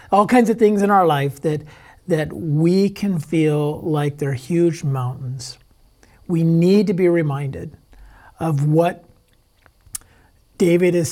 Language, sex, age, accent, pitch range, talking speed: English, male, 50-69, American, 125-185 Hz, 135 wpm